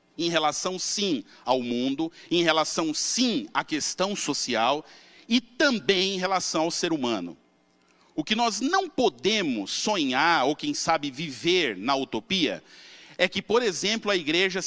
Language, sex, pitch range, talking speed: Portuguese, male, 140-230 Hz, 145 wpm